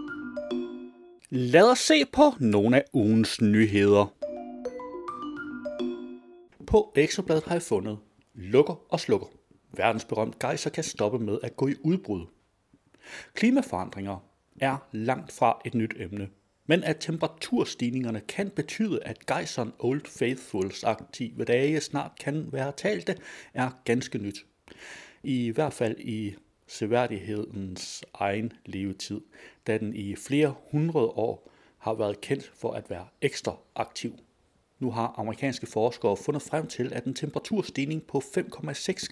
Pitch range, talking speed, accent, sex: 110-170 Hz, 130 wpm, native, male